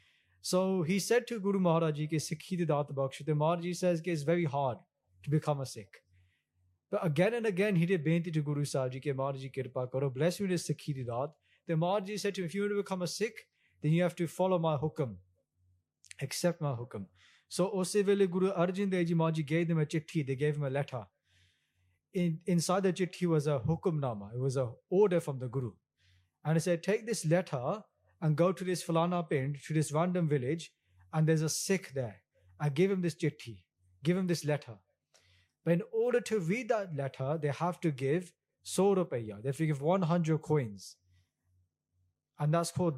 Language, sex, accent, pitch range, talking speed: English, male, Indian, 130-180 Hz, 195 wpm